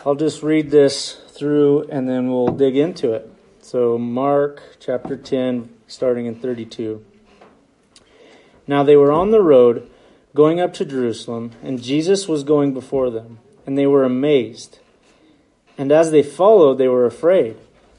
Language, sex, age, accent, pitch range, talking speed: English, male, 30-49, American, 130-165 Hz, 150 wpm